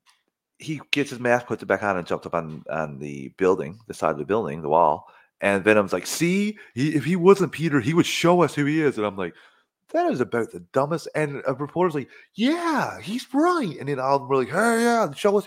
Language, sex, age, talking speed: English, male, 30-49, 250 wpm